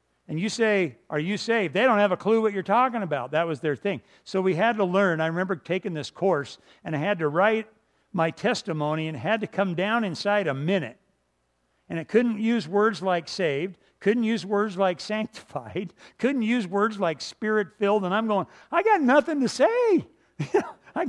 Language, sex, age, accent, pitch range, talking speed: English, male, 60-79, American, 135-200 Hz, 200 wpm